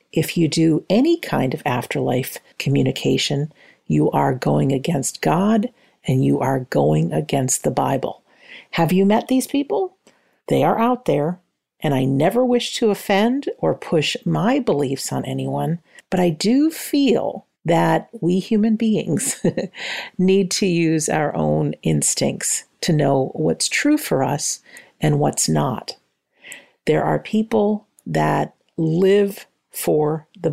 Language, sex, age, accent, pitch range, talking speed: English, female, 50-69, American, 150-225 Hz, 140 wpm